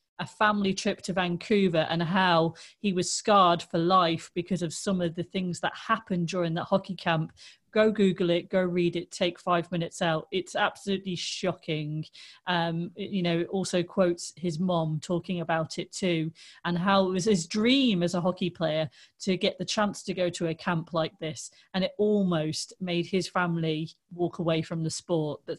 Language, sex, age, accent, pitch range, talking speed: English, female, 30-49, British, 175-205 Hz, 195 wpm